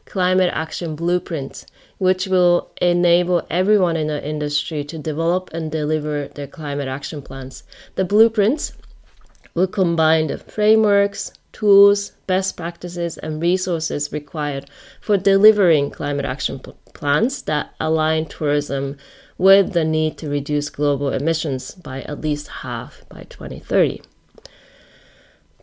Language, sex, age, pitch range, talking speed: English, female, 30-49, 150-185 Hz, 120 wpm